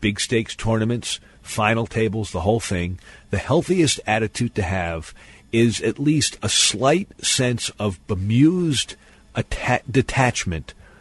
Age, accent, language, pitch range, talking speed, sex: 50-69, American, English, 100-130 Hz, 120 wpm, male